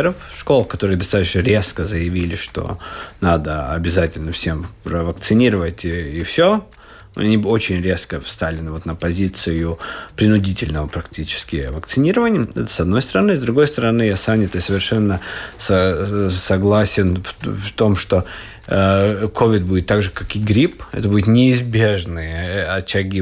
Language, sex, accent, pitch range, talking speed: Russian, male, native, 95-125 Hz, 130 wpm